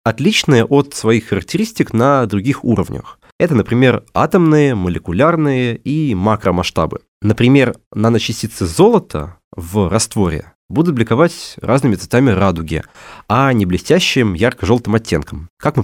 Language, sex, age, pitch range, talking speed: Russian, male, 20-39, 95-150 Hz, 115 wpm